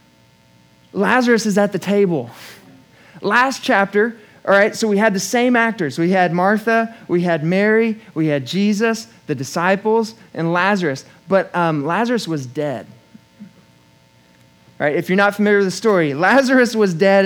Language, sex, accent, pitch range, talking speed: English, male, American, 160-220 Hz, 155 wpm